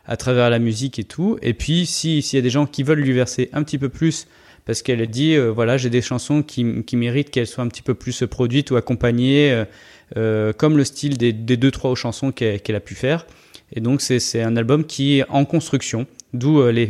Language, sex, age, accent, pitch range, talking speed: French, male, 20-39, French, 115-140 Hz, 250 wpm